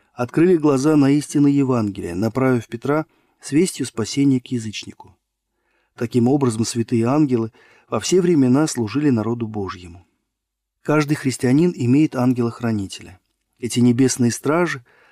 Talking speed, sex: 115 wpm, male